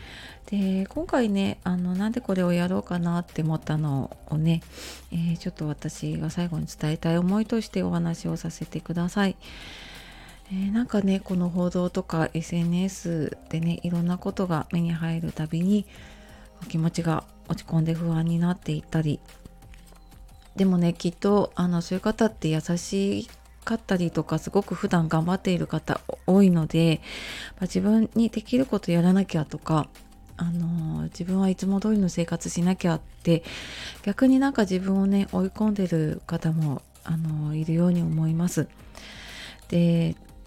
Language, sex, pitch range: Japanese, female, 165-200 Hz